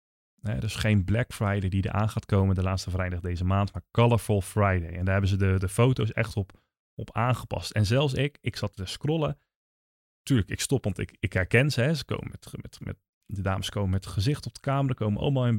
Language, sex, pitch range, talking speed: Dutch, male, 100-135 Hz, 210 wpm